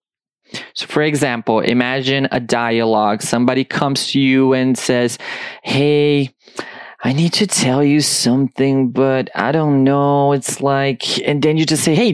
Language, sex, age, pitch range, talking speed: English, male, 20-39, 140-180 Hz, 155 wpm